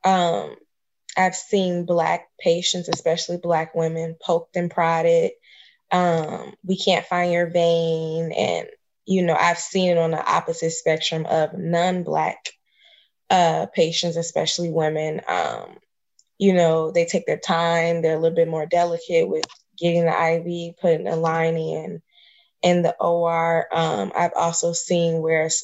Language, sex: English, female